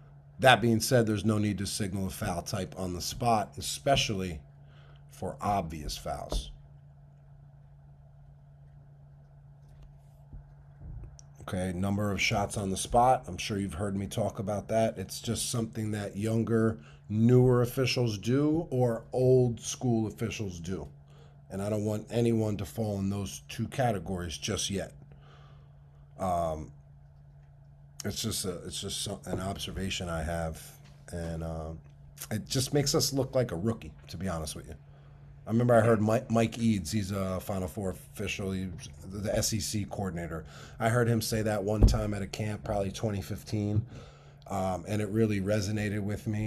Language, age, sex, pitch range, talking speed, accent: English, 40-59, male, 95-135 Hz, 150 wpm, American